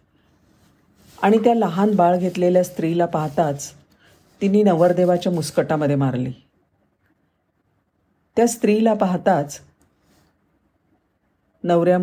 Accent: native